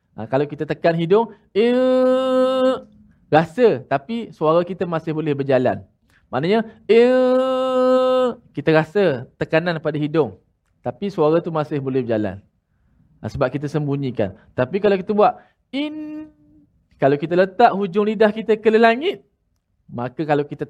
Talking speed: 135 wpm